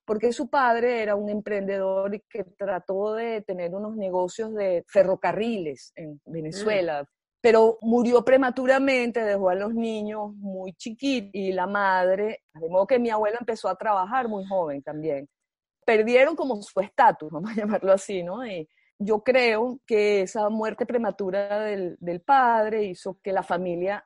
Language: English